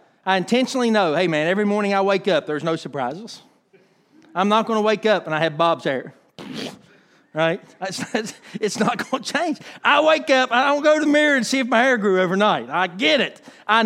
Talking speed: 215 wpm